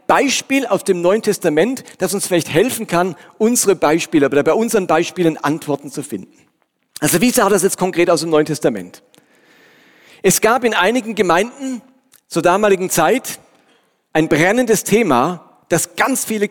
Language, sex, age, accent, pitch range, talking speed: German, male, 40-59, German, 155-210 Hz, 155 wpm